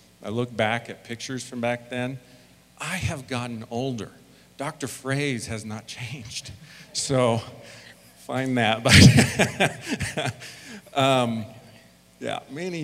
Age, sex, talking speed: 50-69, male, 110 wpm